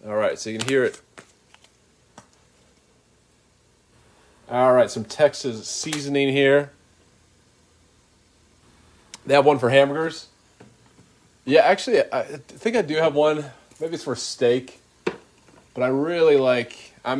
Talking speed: 120 wpm